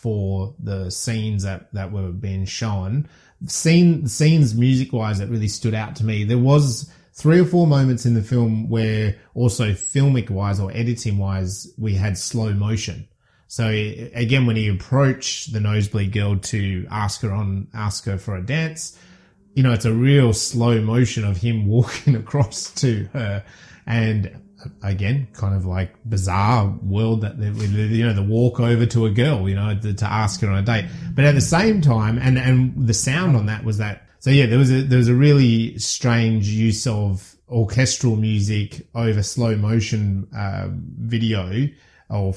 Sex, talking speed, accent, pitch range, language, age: male, 175 wpm, Australian, 100-125 Hz, English, 30-49